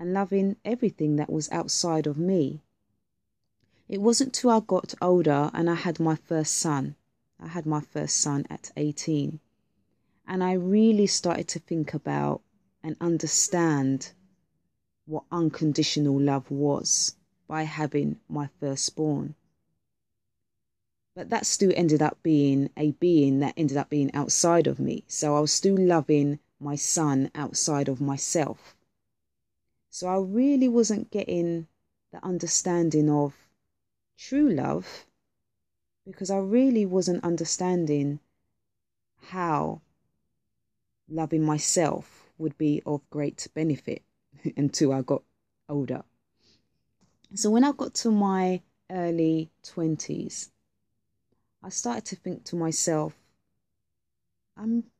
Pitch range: 140-180 Hz